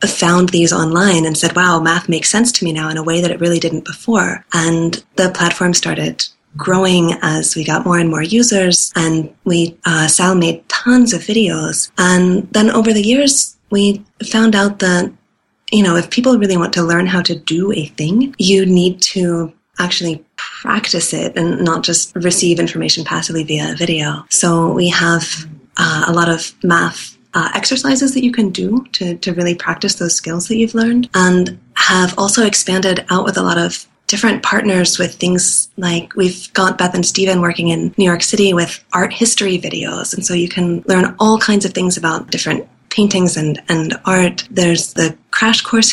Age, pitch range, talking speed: 20-39, 170-205 Hz, 190 wpm